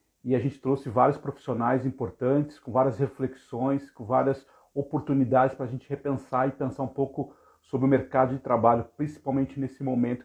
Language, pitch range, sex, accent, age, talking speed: Portuguese, 125-140 Hz, male, Brazilian, 40-59, 170 wpm